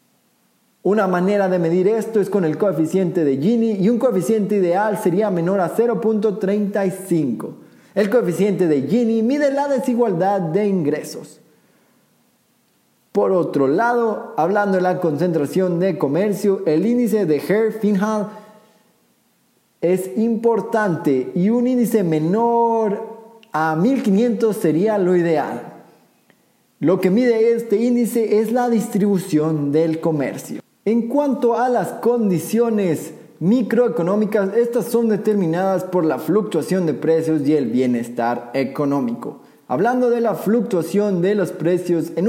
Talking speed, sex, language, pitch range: 125 wpm, male, Spanish, 170-230 Hz